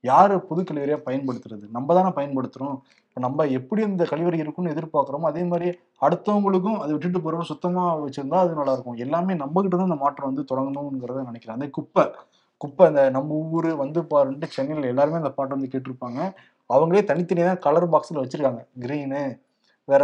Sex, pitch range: male, 135-170 Hz